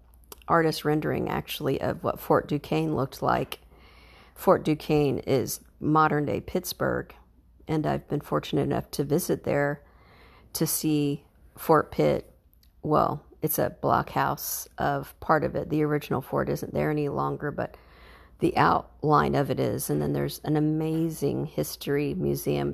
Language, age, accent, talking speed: English, 50-69, American, 145 wpm